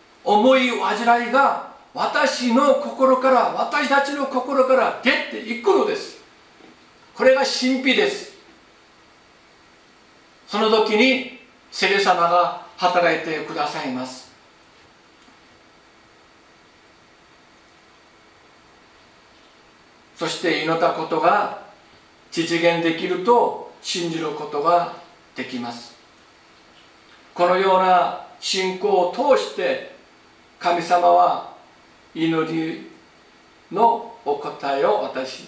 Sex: male